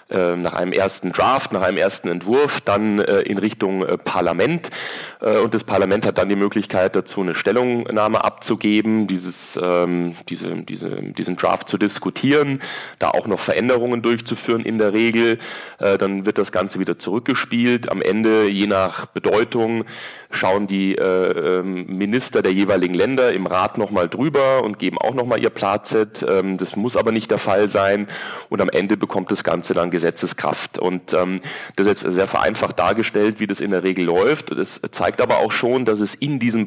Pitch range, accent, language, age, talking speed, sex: 95-115 Hz, German, German, 30-49, 170 wpm, male